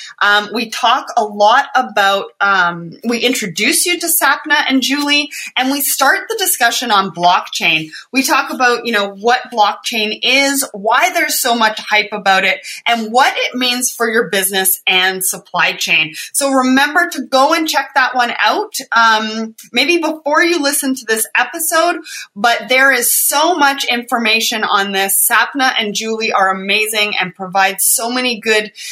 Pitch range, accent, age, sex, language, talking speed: 205-270 Hz, American, 30-49, female, English, 170 wpm